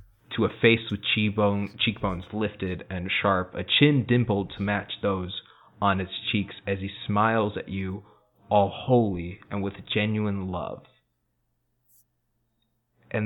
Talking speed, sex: 130 wpm, male